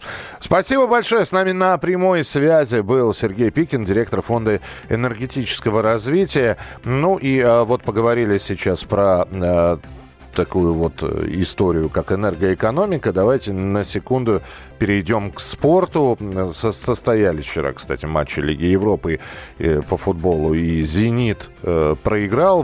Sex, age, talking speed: male, 40-59, 115 wpm